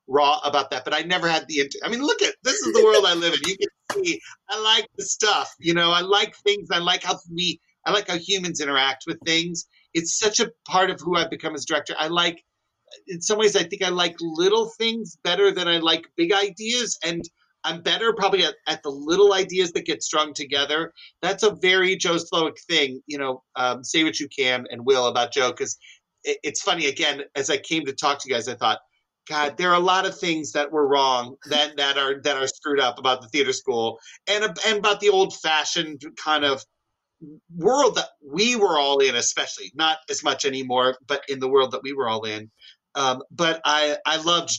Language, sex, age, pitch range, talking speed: English, male, 40-59, 140-195 Hz, 225 wpm